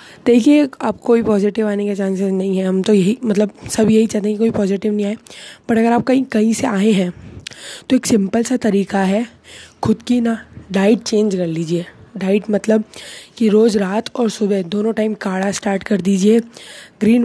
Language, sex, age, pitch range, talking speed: Hindi, female, 20-39, 205-235 Hz, 195 wpm